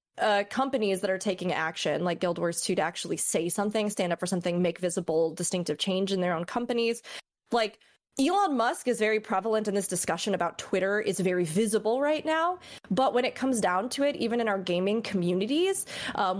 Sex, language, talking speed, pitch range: female, English, 200 wpm, 195-245 Hz